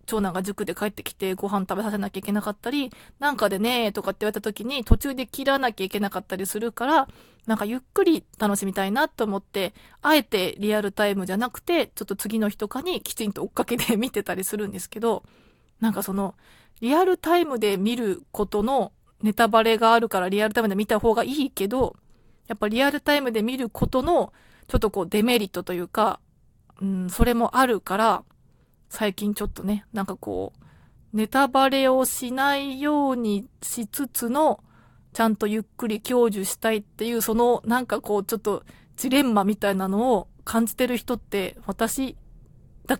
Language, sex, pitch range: Japanese, female, 200-250 Hz